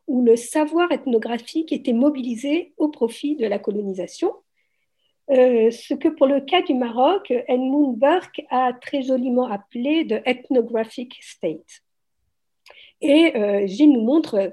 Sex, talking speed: female, 130 wpm